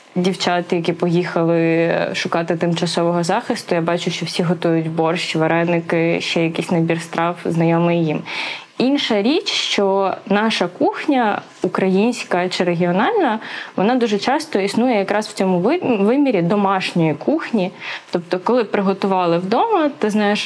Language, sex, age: Ukrainian, female, 20-39